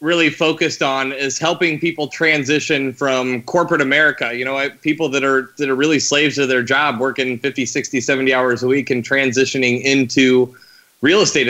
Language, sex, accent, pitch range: English, male, American, 125-145 Hz